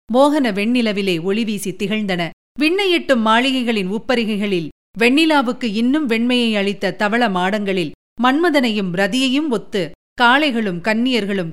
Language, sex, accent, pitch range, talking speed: Tamil, female, native, 195-265 Hz, 90 wpm